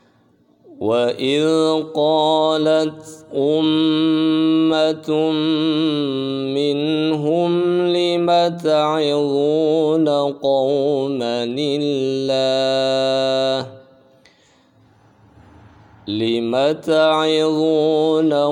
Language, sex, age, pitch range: Indonesian, male, 50-69, 135-155 Hz